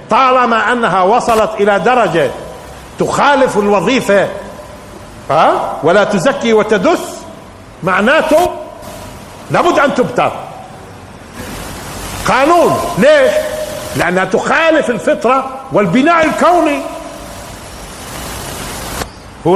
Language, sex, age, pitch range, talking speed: Arabic, male, 50-69, 190-275 Hz, 70 wpm